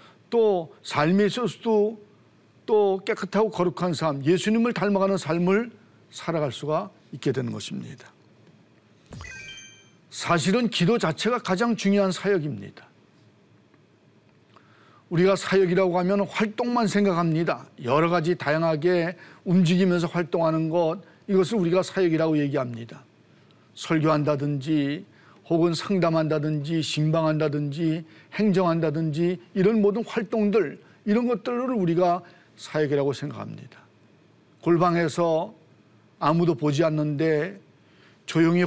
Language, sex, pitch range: Korean, male, 155-195 Hz